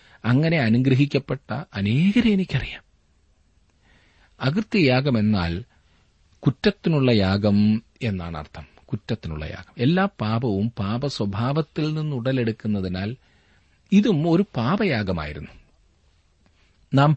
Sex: male